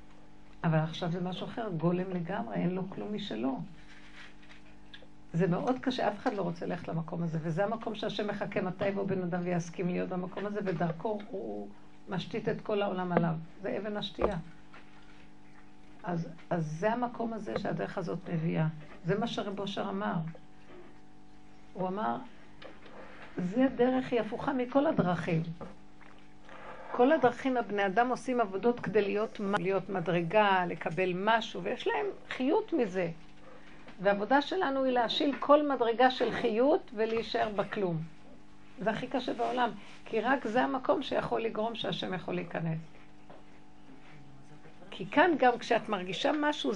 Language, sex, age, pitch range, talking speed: Hebrew, female, 60-79, 175-240 Hz, 140 wpm